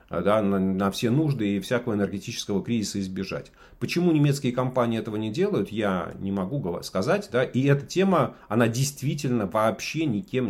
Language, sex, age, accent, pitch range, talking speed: Russian, male, 40-59, native, 100-135 Hz, 160 wpm